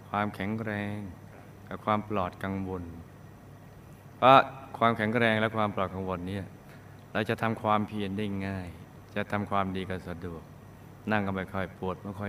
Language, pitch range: Thai, 95-115 Hz